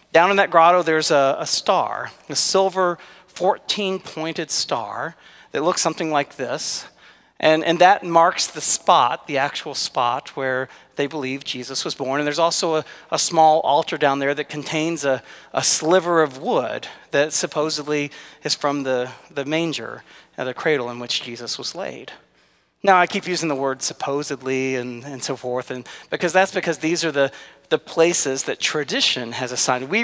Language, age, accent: English, 40-59, American